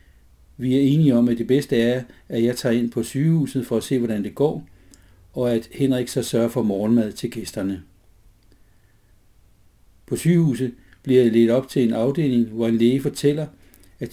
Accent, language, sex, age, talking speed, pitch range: native, Danish, male, 60-79, 185 wpm, 100-130 Hz